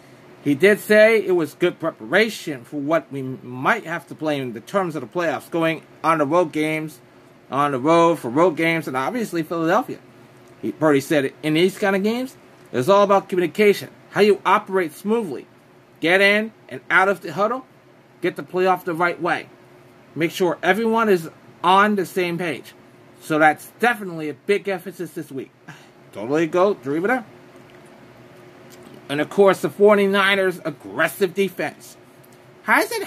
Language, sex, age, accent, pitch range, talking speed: English, male, 30-49, American, 155-200 Hz, 165 wpm